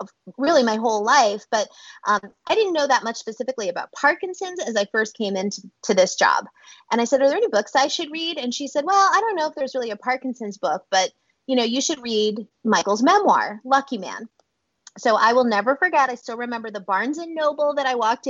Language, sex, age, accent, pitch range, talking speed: English, female, 20-39, American, 210-290 Hz, 225 wpm